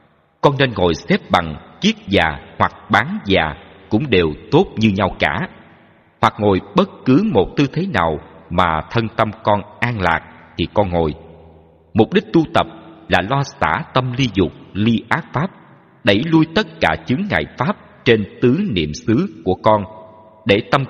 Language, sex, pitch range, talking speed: Vietnamese, male, 90-125 Hz, 175 wpm